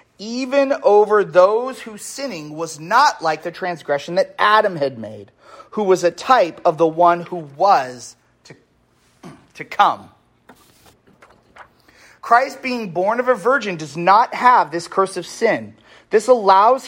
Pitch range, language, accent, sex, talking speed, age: 170-240 Hz, English, American, male, 145 wpm, 30-49